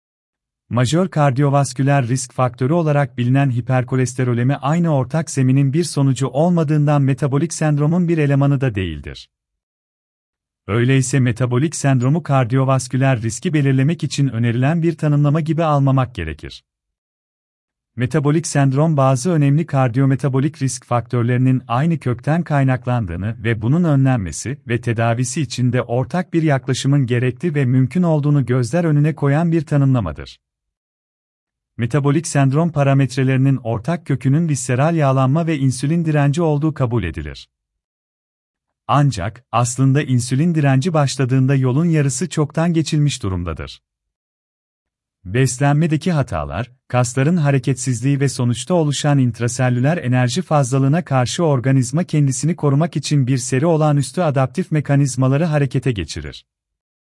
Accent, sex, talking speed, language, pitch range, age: native, male, 115 wpm, Turkish, 125-150 Hz, 40-59